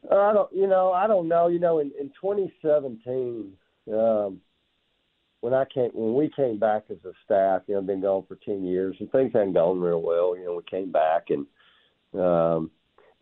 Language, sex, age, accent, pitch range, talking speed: English, male, 50-69, American, 95-155 Hz, 195 wpm